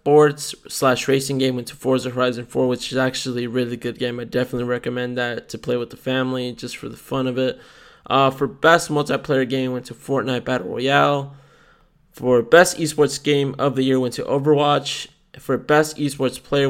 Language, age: English, 20-39